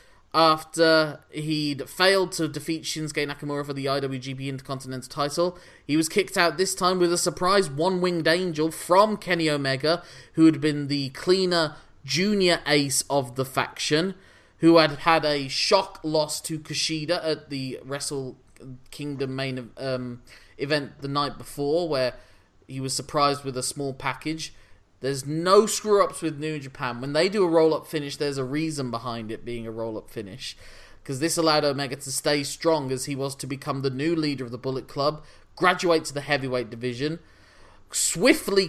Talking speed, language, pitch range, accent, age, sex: 165 wpm, English, 135-165 Hz, British, 20-39, male